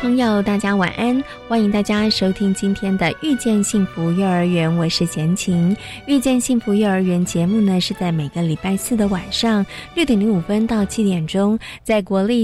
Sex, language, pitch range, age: female, Chinese, 175-215 Hz, 20-39